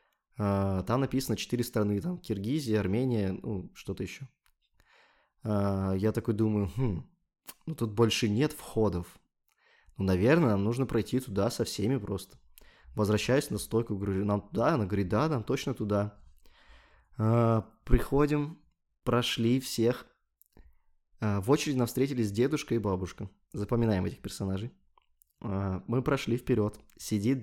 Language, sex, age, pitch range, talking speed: Russian, male, 20-39, 105-130 Hz, 135 wpm